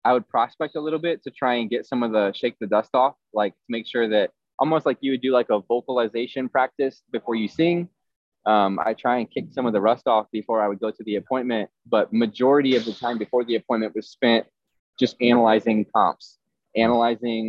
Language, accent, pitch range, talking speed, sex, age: English, American, 105-120 Hz, 225 wpm, male, 20-39